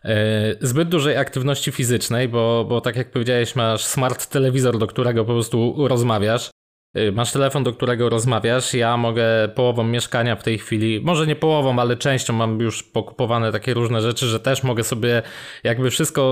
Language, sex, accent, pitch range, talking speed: Polish, male, native, 115-135 Hz, 170 wpm